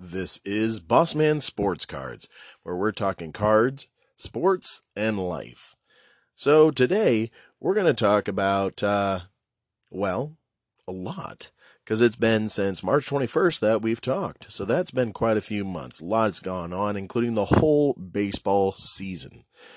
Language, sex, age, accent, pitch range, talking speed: English, male, 30-49, American, 95-125 Hz, 145 wpm